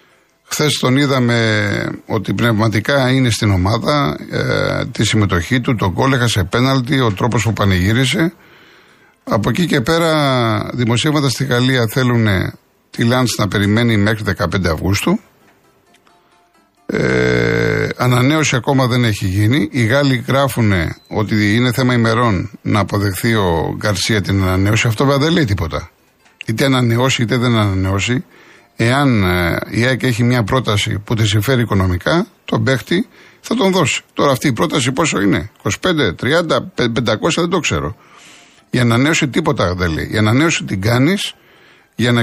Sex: male